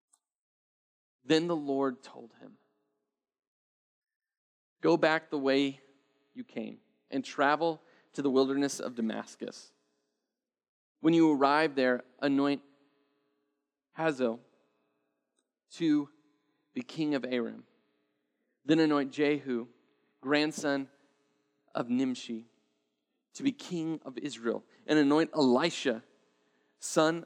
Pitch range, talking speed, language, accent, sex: 120-145 Hz, 95 wpm, English, American, male